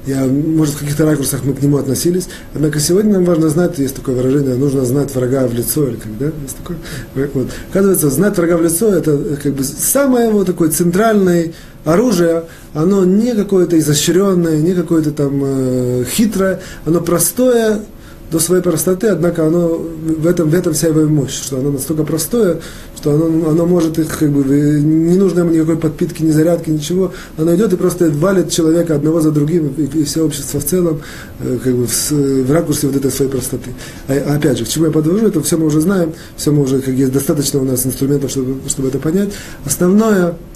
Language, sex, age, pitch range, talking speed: Russian, male, 30-49, 140-180 Hz, 195 wpm